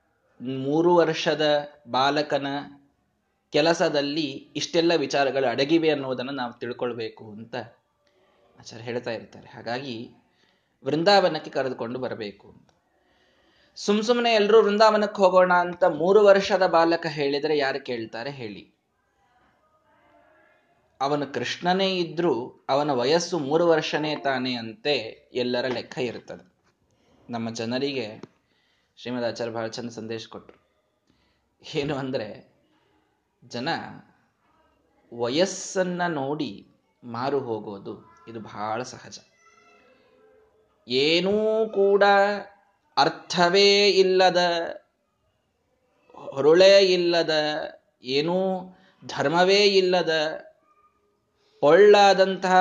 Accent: native